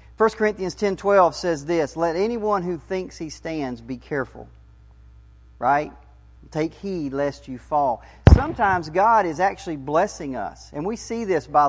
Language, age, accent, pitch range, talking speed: English, 40-59, American, 120-175 Hz, 155 wpm